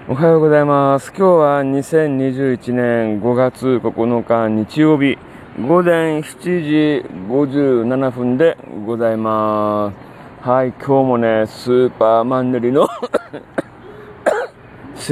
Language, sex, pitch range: Japanese, male, 125-155 Hz